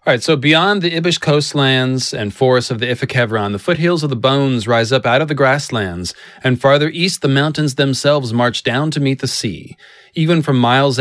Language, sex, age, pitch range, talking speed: English, male, 30-49, 115-145 Hz, 200 wpm